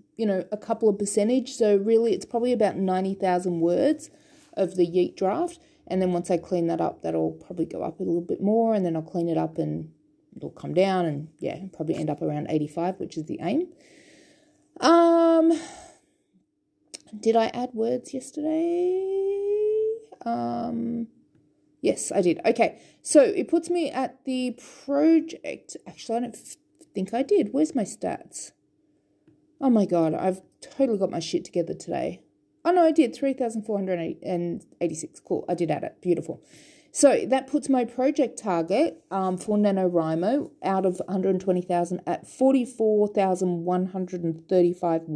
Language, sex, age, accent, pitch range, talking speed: English, female, 30-49, Australian, 170-275 Hz, 155 wpm